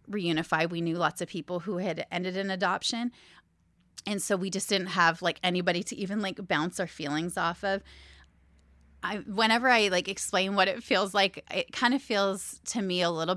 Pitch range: 165-195 Hz